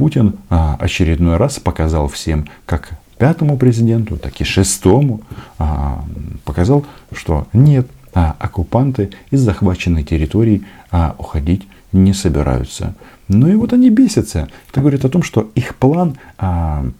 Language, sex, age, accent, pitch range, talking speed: Russian, male, 40-59, native, 80-110 Hz, 140 wpm